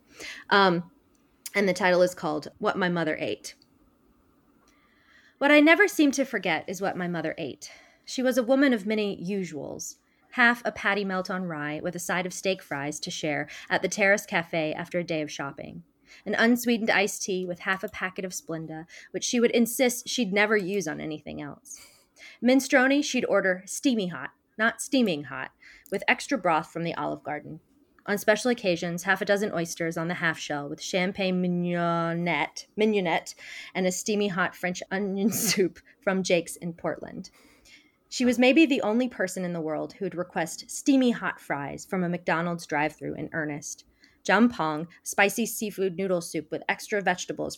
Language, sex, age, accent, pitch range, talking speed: English, female, 20-39, American, 165-220 Hz, 180 wpm